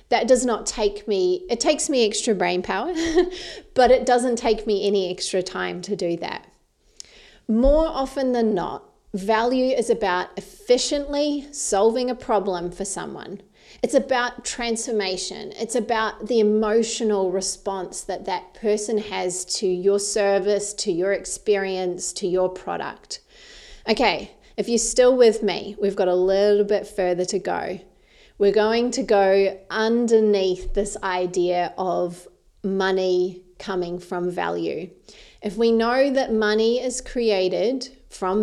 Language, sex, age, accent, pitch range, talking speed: English, female, 30-49, Australian, 190-245 Hz, 140 wpm